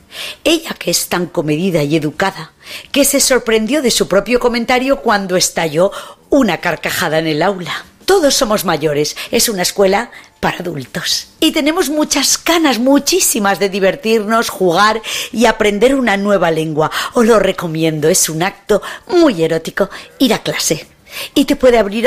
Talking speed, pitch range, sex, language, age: 155 wpm, 185-265 Hz, female, Spanish, 40-59